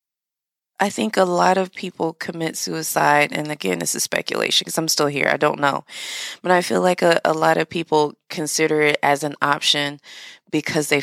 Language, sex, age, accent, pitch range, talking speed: English, female, 20-39, American, 135-165 Hz, 195 wpm